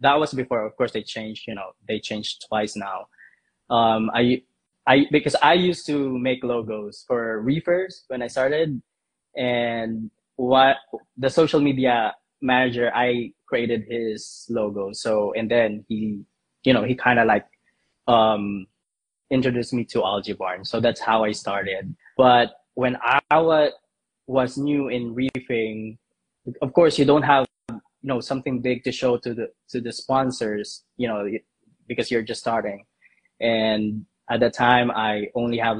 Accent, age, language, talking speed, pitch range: Filipino, 20-39, English, 160 wpm, 115-135 Hz